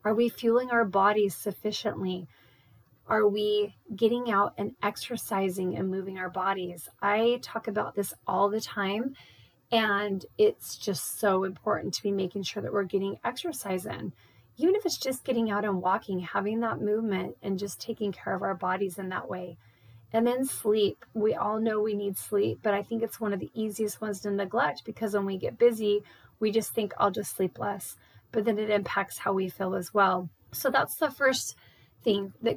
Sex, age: female, 30-49